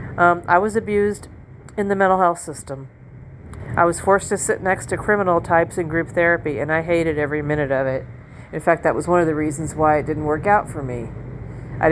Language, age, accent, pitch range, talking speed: English, 40-59, American, 140-175 Hz, 220 wpm